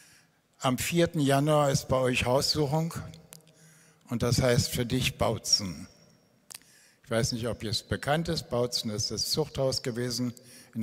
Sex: male